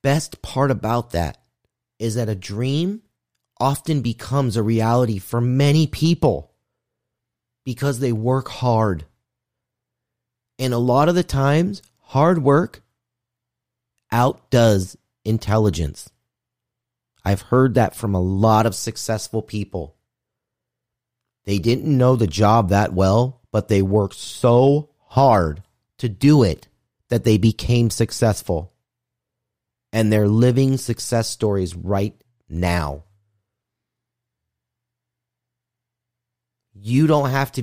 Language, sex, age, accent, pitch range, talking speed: English, male, 30-49, American, 105-125 Hz, 110 wpm